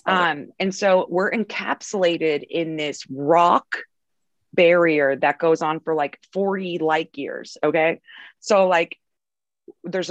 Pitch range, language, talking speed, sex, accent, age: 155-205 Hz, English, 125 wpm, female, American, 30-49